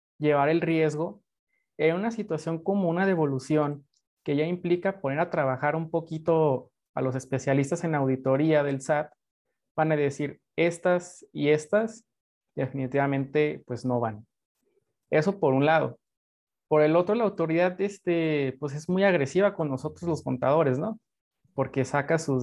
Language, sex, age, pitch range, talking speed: Spanish, male, 30-49, 145-195 Hz, 150 wpm